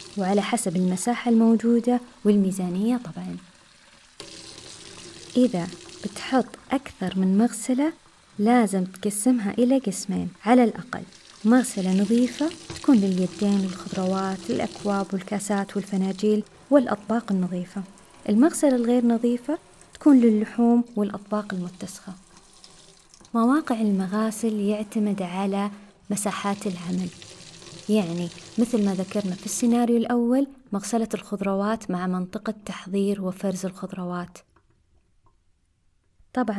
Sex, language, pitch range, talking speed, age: female, Arabic, 190-235 Hz, 90 wpm, 20-39